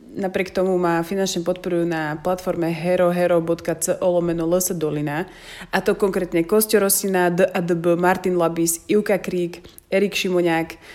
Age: 20-39